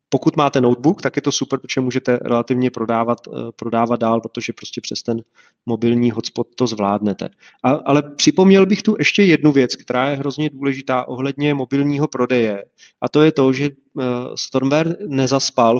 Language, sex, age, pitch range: Czech, male, 30-49, 120-140 Hz